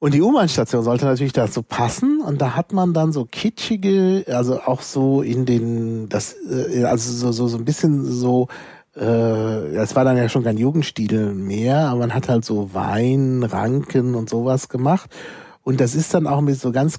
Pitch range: 115-145 Hz